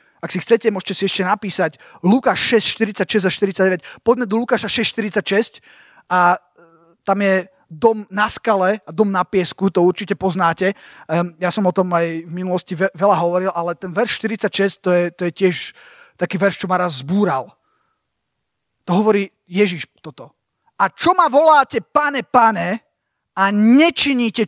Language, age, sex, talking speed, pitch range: Slovak, 20-39, male, 160 wpm, 180-230 Hz